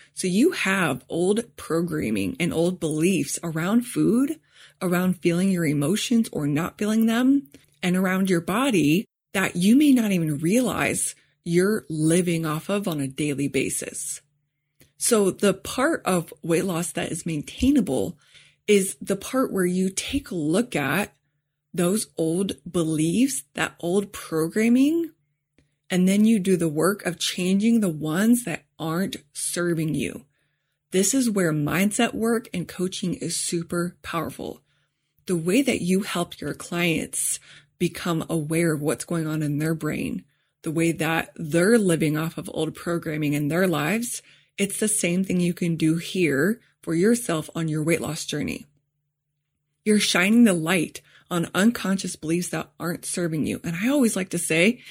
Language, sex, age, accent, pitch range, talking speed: English, female, 20-39, American, 160-200 Hz, 155 wpm